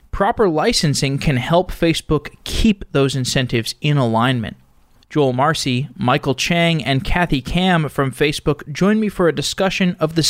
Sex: male